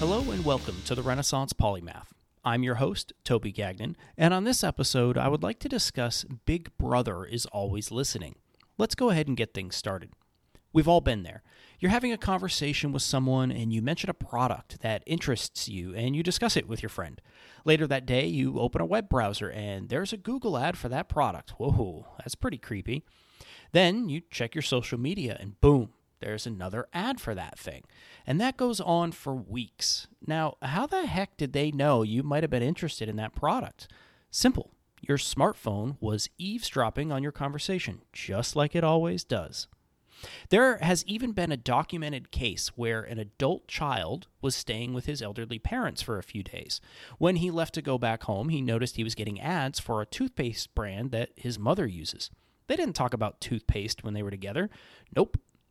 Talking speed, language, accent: 190 wpm, English, American